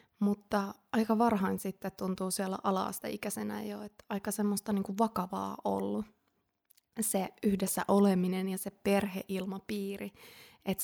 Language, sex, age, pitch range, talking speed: Finnish, female, 20-39, 185-215 Hz, 125 wpm